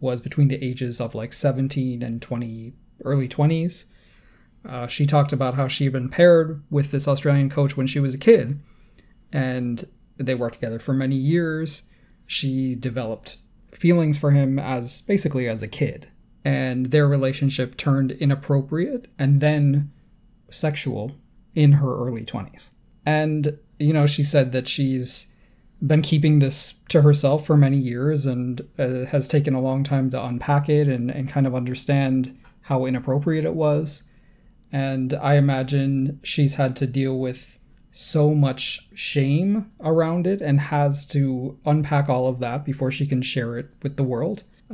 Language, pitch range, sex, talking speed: English, 130-150 Hz, male, 160 wpm